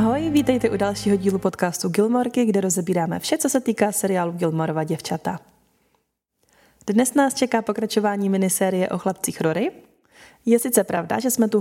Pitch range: 185-225 Hz